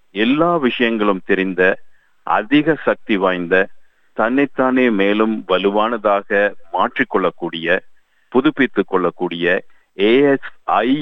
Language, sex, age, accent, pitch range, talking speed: Tamil, male, 50-69, native, 95-125 Hz, 70 wpm